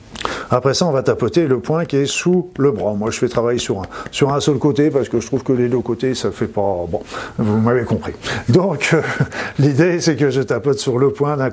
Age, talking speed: 50-69, 250 wpm